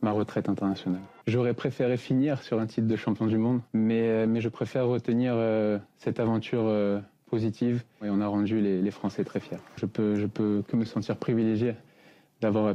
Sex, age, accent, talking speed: male, 20-39, French, 200 wpm